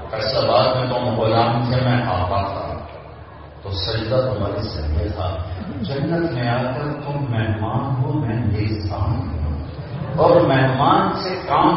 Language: English